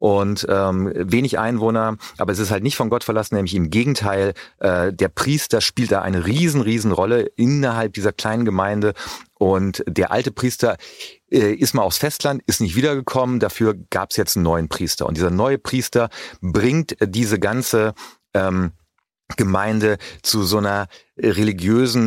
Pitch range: 95-115 Hz